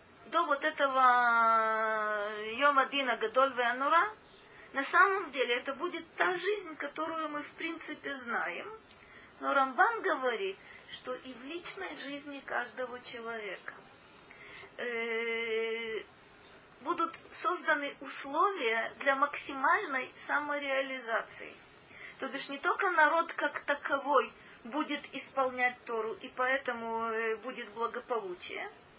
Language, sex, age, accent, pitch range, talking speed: Russian, female, 30-49, native, 235-315 Hz, 100 wpm